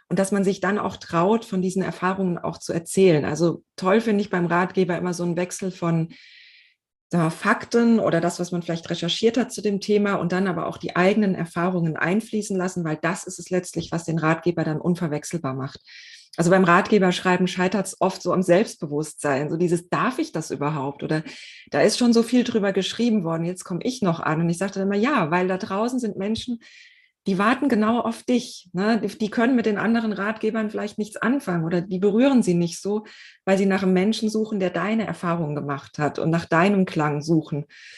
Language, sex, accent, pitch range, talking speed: German, female, German, 170-210 Hz, 210 wpm